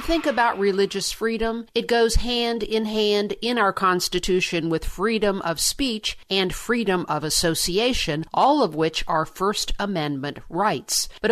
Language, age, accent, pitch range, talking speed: English, 50-69, American, 165-210 Hz, 145 wpm